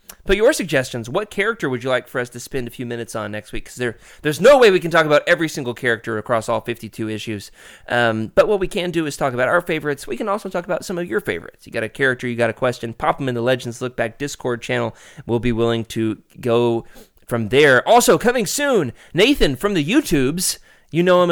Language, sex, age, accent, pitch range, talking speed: English, male, 20-39, American, 120-180 Hz, 245 wpm